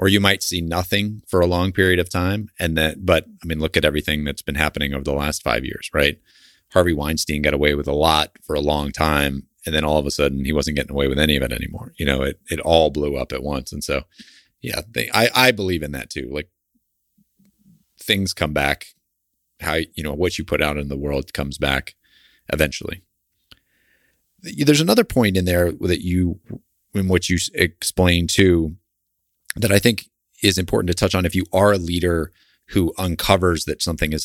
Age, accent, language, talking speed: 30-49, American, English, 210 wpm